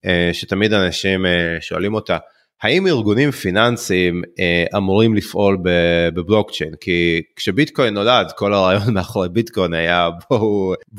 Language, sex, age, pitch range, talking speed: Hebrew, male, 30-49, 95-115 Hz, 105 wpm